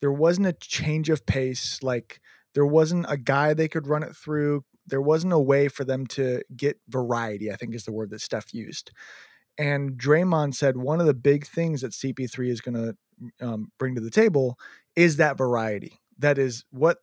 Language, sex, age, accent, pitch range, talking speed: English, male, 30-49, American, 130-170 Hz, 200 wpm